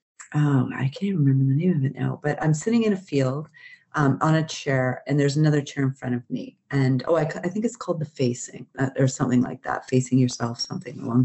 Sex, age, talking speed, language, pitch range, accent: female, 40-59, 240 wpm, English, 135-170 Hz, American